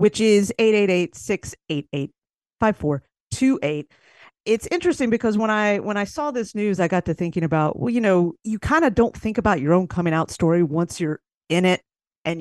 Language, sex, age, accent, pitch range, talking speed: English, female, 40-59, American, 150-200 Hz, 175 wpm